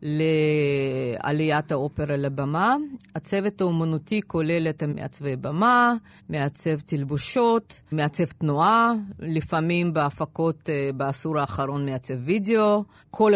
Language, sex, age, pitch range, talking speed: Hebrew, female, 30-49, 155-200 Hz, 90 wpm